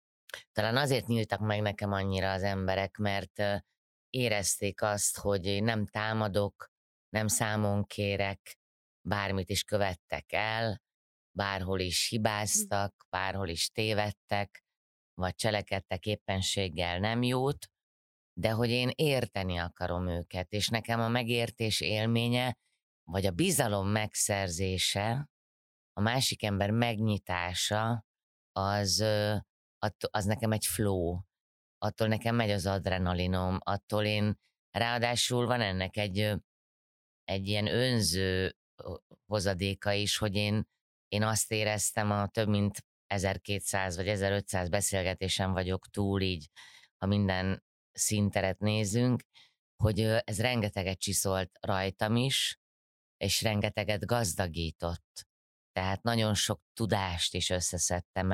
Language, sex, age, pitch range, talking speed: Hungarian, female, 30-49, 95-110 Hz, 110 wpm